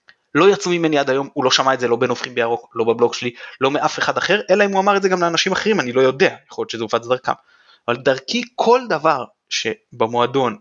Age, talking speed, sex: 20-39, 240 wpm, male